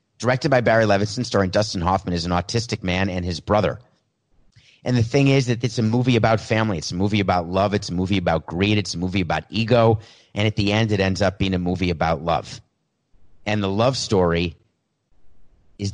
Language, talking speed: English, 210 wpm